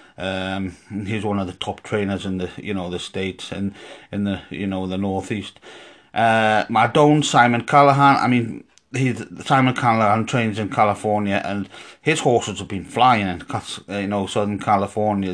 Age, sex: 30-49, male